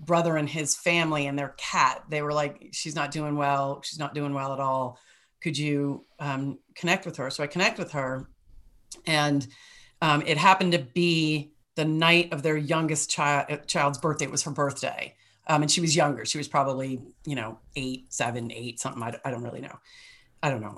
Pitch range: 140-160 Hz